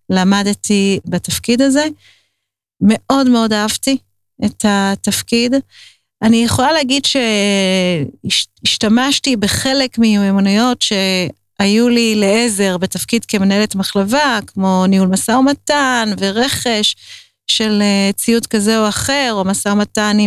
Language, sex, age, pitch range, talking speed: Hebrew, female, 40-59, 195-240 Hz, 100 wpm